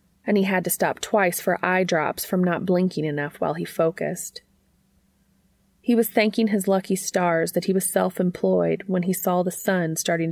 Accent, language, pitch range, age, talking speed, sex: American, English, 160-195 Hz, 30-49, 185 wpm, female